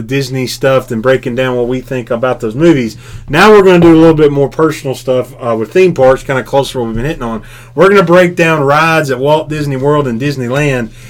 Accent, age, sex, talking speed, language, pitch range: American, 30-49, male, 255 wpm, English, 120-145 Hz